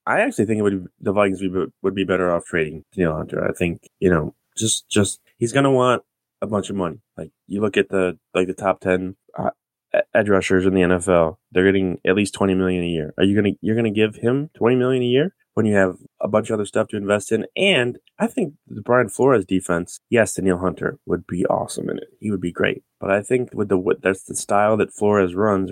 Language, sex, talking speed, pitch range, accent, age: English, male, 245 wpm, 90-105 Hz, American, 20-39